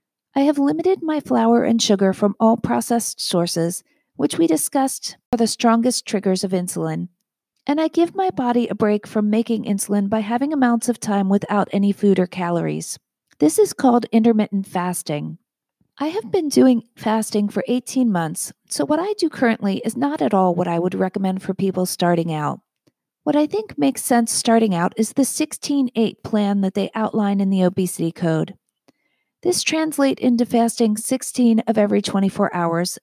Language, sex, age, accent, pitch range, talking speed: English, female, 40-59, American, 195-255 Hz, 175 wpm